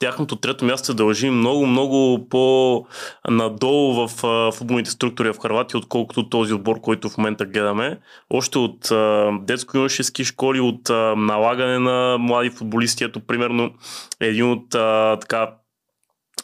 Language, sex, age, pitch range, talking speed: Bulgarian, male, 20-39, 115-130 Hz, 130 wpm